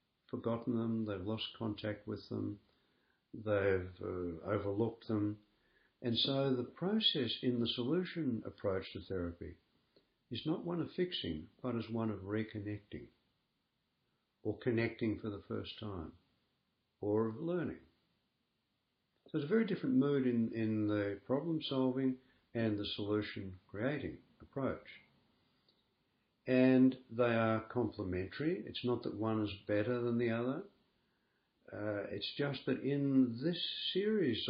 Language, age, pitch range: English, 60-79, 105-130 Hz